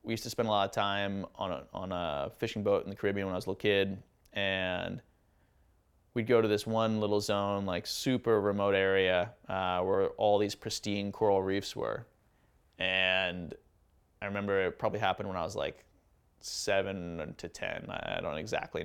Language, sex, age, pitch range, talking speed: English, male, 20-39, 95-110 Hz, 190 wpm